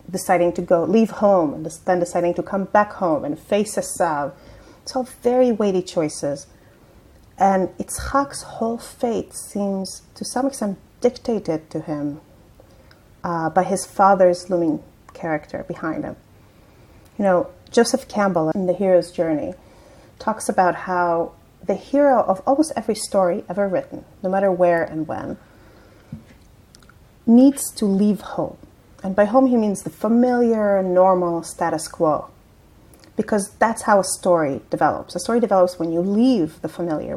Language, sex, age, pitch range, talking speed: English, female, 30-49, 170-225 Hz, 150 wpm